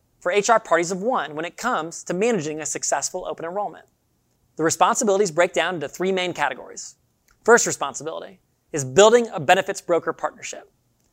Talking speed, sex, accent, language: 160 wpm, male, American, English